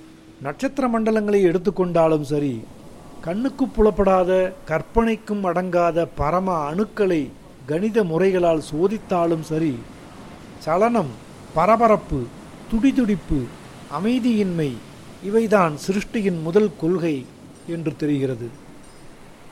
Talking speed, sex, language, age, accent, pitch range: 75 wpm, male, Tamil, 50-69, native, 155-205 Hz